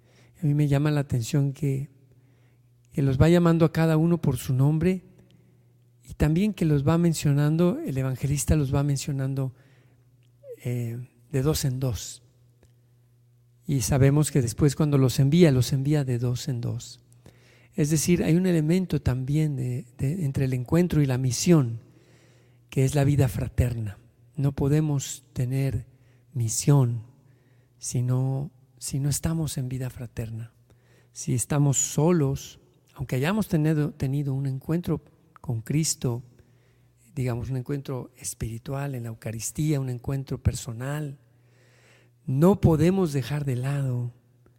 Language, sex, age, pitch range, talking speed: Spanish, male, 50-69, 120-145 Hz, 135 wpm